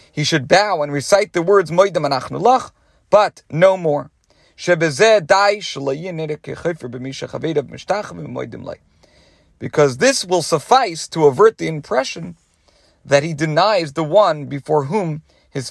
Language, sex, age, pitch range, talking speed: English, male, 40-59, 135-190 Hz, 100 wpm